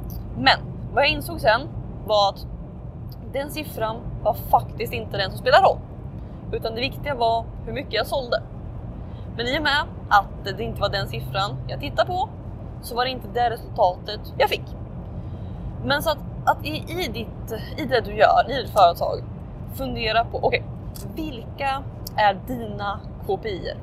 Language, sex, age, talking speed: Swedish, female, 20-39, 160 wpm